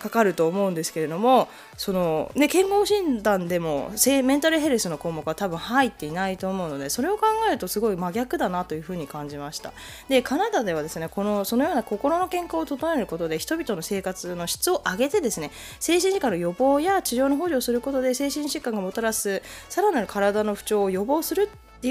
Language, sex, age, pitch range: Japanese, female, 20-39, 180-290 Hz